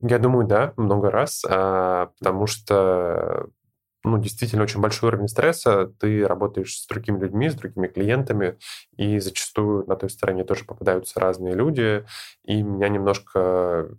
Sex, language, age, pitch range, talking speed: male, Russian, 10-29, 95-110 Hz, 140 wpm